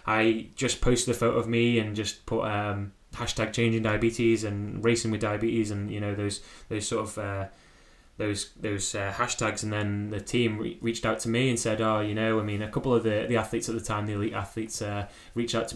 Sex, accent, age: male, British, 10-29